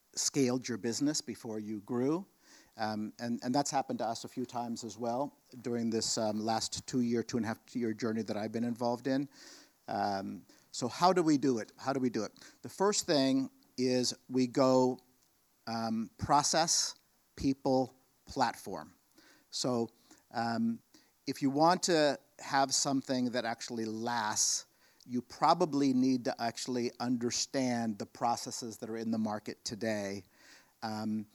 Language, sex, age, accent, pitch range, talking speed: English, male, 50-69, American, 115-130 Hz, 160 wpm